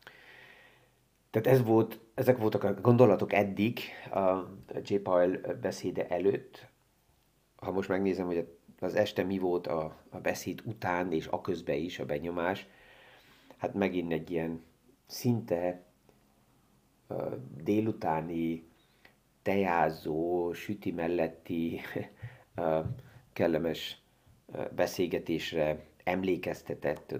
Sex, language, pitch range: male, Hungarian, 80-105 Hz